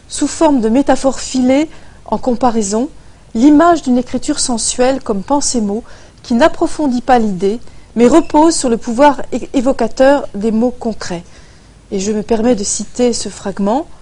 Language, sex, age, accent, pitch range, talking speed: French, female, 30-49, French, 210-275 Hz, 155 wpm